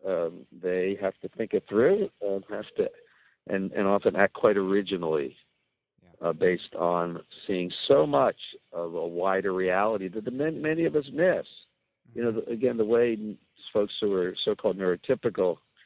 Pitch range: 90-120 Hz